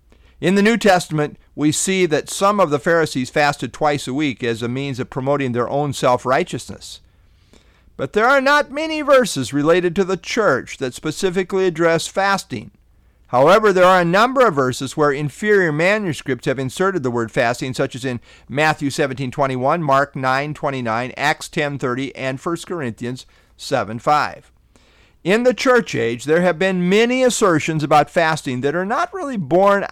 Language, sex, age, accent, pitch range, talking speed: English, male, 50-69, American, 135-190 Hz, 160 wpm